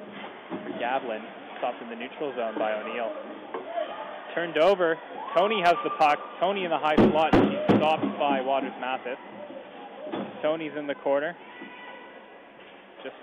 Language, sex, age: English, male, 20-39